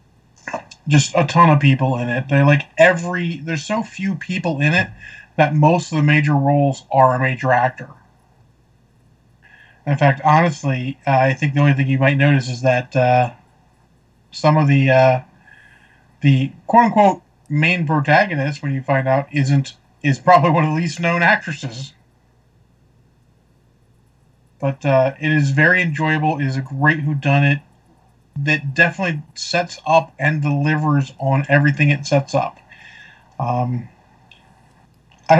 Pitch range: 135-160 Hz